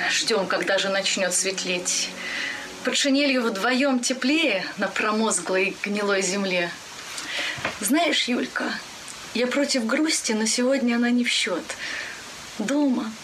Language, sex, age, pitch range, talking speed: Russian, female, 20-39, 205-260 Hz, 110 wpm